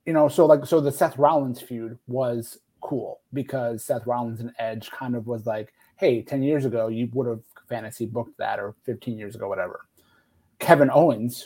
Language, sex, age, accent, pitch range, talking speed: English, male, 30-49, American, 115-145 Hz, 195 wpm